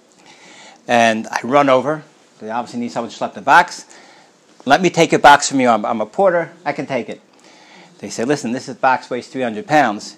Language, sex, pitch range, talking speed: English, male, 130-165 Hz, 210 wpm